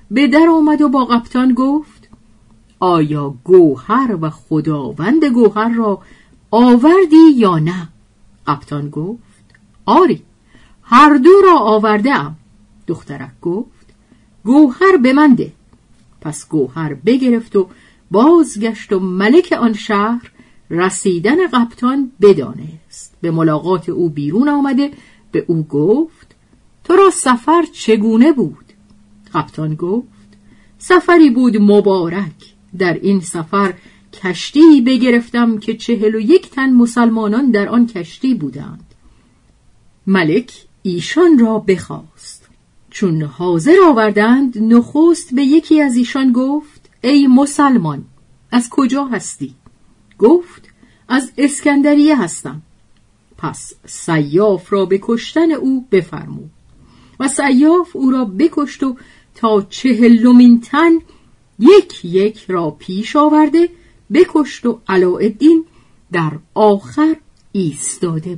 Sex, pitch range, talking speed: female, 175-280 Hz, 105 wpm